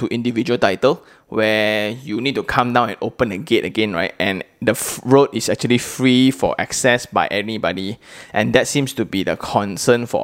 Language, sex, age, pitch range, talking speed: English, male, 20-39, 100-120 Hz, 190 wpm